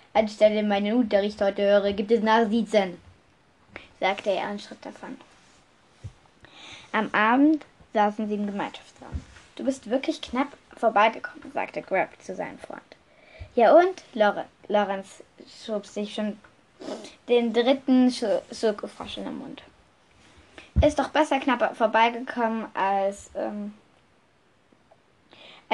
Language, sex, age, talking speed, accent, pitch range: German, female, 10-29, 110 wpm, German, 205-265 Hz